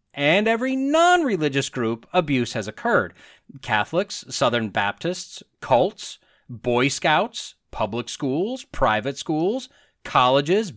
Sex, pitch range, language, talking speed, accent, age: male, 140-225 Hz, English, 105 wpm, American, 30-49